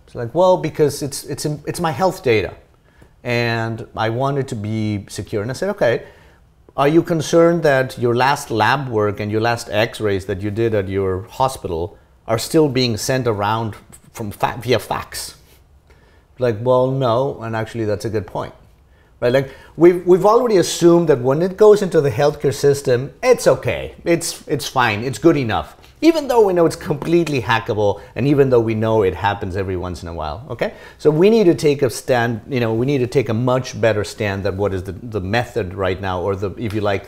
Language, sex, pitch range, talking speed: English, male, 105-145 Hz, 205 wpm